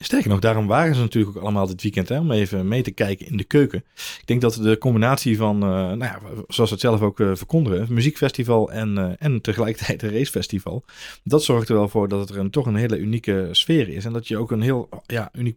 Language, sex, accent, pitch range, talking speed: Dutch, male, Dutch, 110-140 Hz, 245 wpm